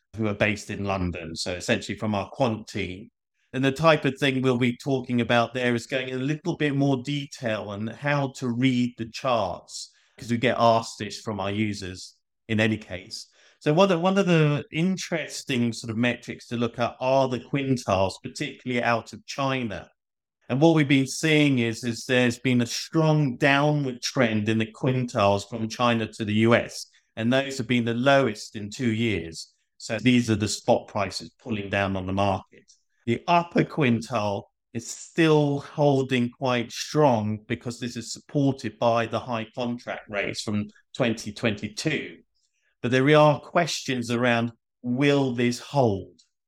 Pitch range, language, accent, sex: 110-130 Hz, English, British, male